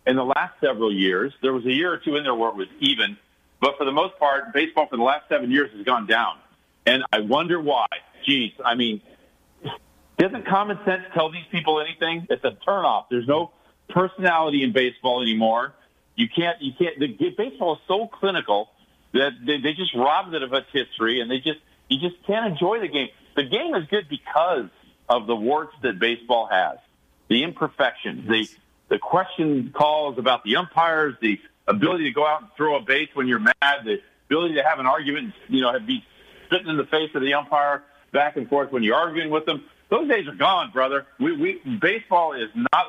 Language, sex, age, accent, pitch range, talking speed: English, male, 50-69, American, 140-185 Hz, 205 wpm